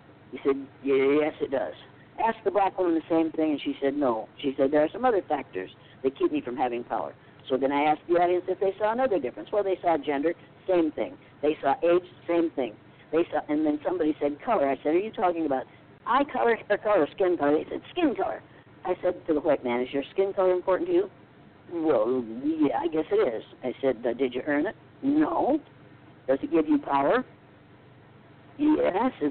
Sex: female